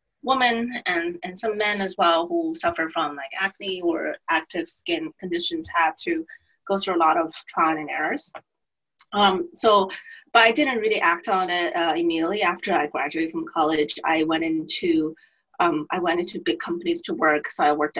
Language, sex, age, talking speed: English, female, 20-39, 185 wpm